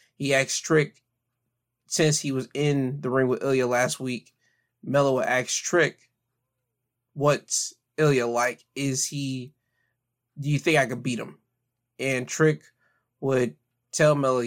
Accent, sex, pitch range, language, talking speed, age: American, male, 125-145 Hz, English, 140 wpm, 20-39